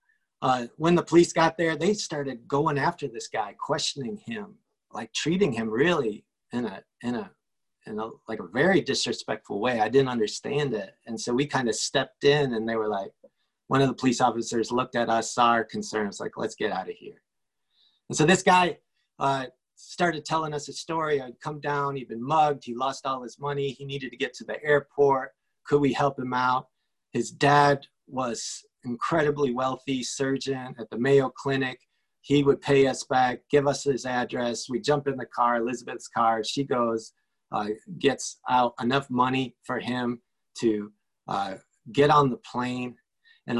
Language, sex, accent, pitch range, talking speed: English, male, American, 125-160 Hz, 185 wpm